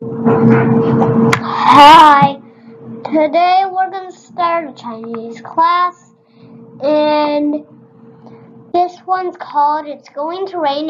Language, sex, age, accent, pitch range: Chinese, female, 10-29, American, 275-350 Hz